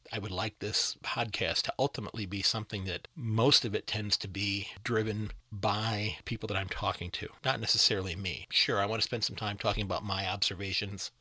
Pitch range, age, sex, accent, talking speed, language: 100-120 Hz, 40-59, male, American, 200 wpm, English